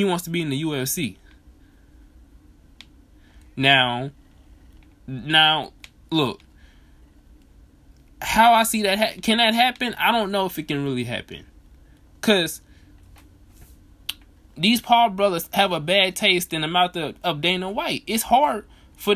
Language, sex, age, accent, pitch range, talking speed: English, male, 20-39, American, 140-220 Hz, 130 wpm